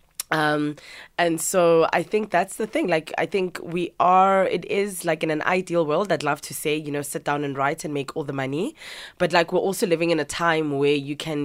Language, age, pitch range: English, 20-39, 145-170 Hz